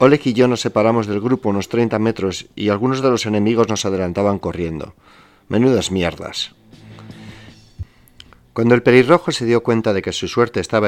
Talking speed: 170 wpm